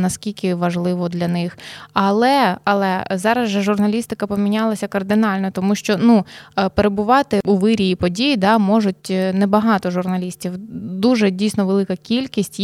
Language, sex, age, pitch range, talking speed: Ukrainian, female, 20-39, 185-210 Hz, 125 wpm